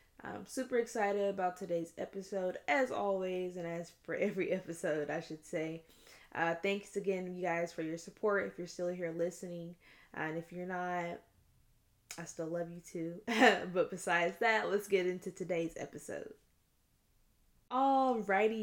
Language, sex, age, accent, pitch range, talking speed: English, female, 10-29, American, 180-210 Hz, 155 wpm